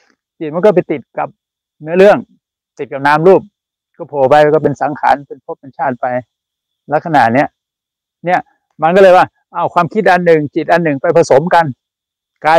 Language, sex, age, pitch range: Thai, male, 60-79, 145-180 Hz